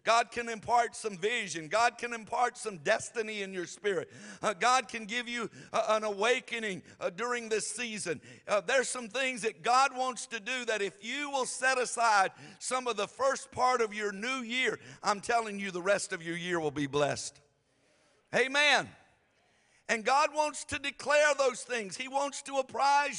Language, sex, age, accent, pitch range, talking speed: English, male, 50-69, American, 210-250 Hz, 185 wpm